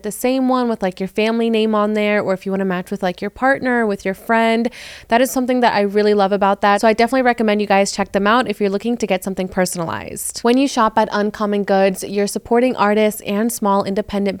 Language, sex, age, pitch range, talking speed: English, female, 20-39, 200-235 Hz, 250 wpm